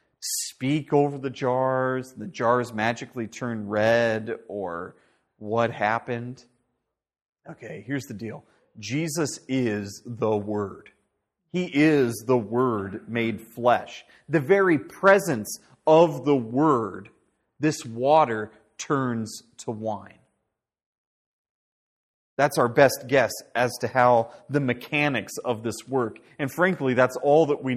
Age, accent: 30-49, American